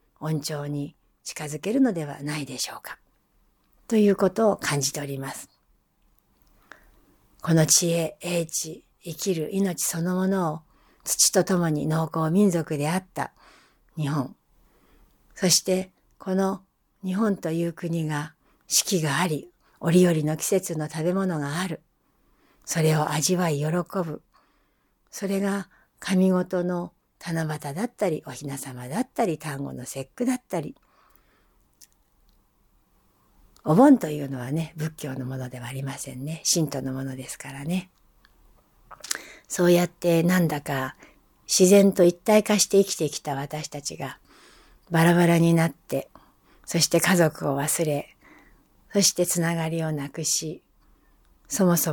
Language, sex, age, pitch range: Japanese, female, 60-79, 145-180 Hz